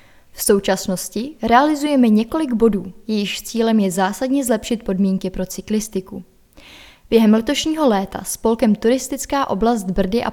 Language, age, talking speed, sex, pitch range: Czech, 20-39, 120 wpm, female, 190-245 Hz